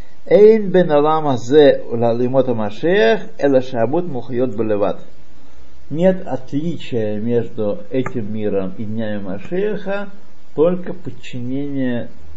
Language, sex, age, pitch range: Russian, male, 50-69, 120-180 Hz